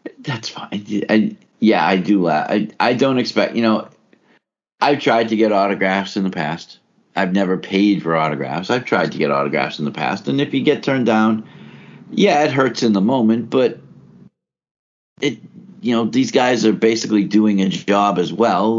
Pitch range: 80-105 Hz